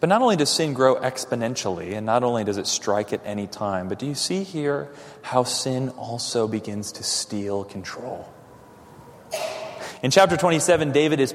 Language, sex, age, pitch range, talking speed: English, male, 30-49, 105-145 Hz, 175 wpm